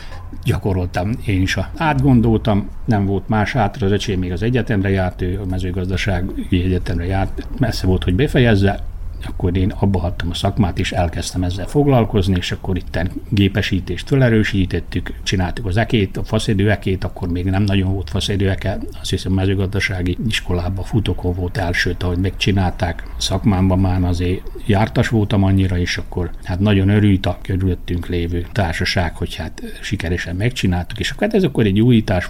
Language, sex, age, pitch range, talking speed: Hungarian, male, 60-79, 90-105 Hz, 155 wpm